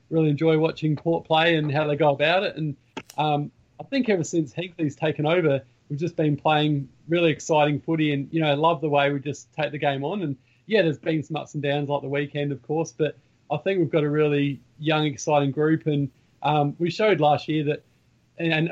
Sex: male